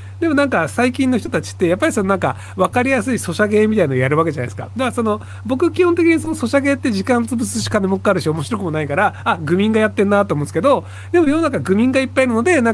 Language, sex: Japanese, male